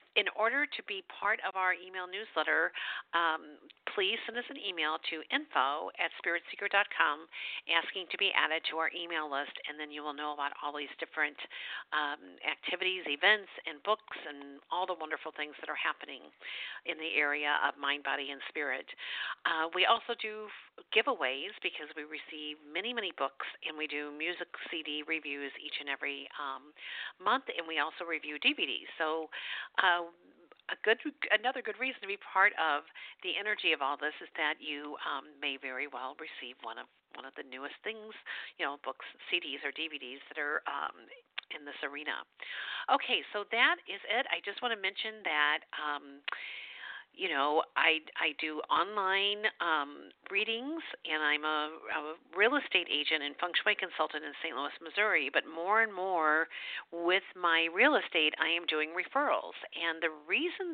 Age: 50-69